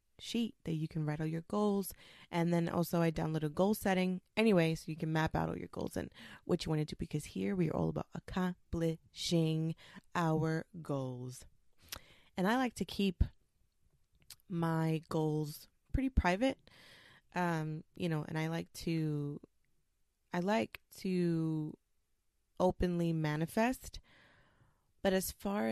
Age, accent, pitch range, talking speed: 20-39, American, 155-180 Hz, 150 wpm